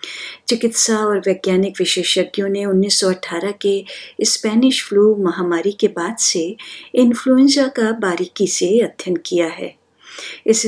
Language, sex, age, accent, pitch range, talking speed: Hindi, female, 50-69, native, 185-225 Hz, 120 wpm